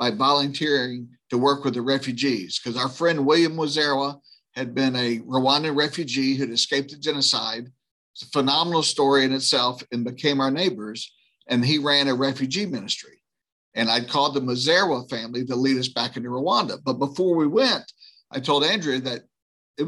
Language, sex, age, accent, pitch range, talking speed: English, male, 50-69, American, 125-155 Hz, 175 wpm